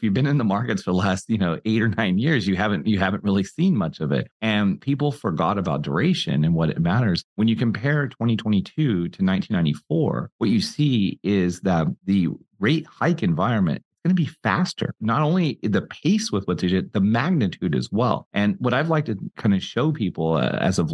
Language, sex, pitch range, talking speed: English, male, 90-125 Hz, 215 wpm